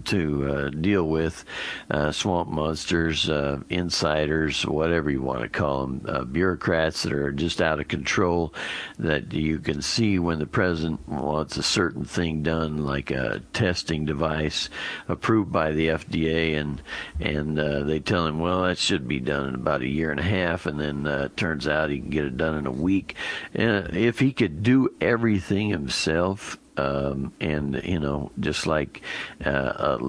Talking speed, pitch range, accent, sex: 180 wpm, 75-85 Hz, American, male